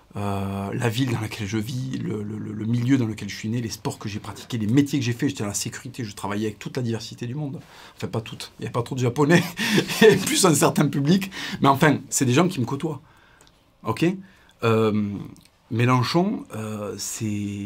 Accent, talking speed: French, 230 wpm